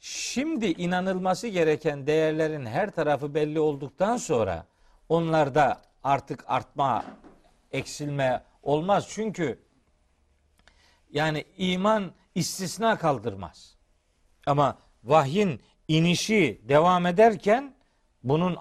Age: 50-69